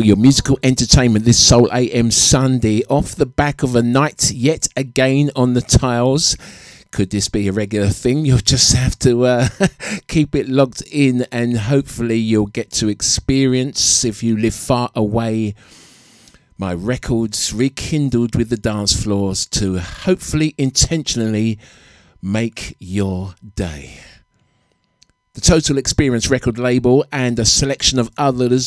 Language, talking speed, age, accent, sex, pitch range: English, 140 wpm, 50-69, British, male, 110-135 Hz